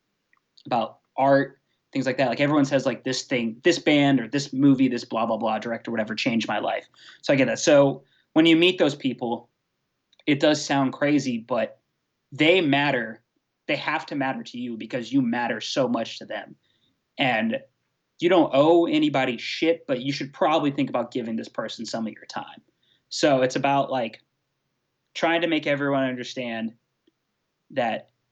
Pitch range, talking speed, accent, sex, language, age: 120-145 Hz, 180 wpm, American, male, English, 20-39